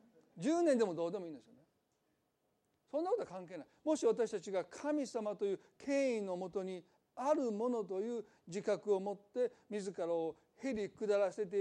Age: 40-59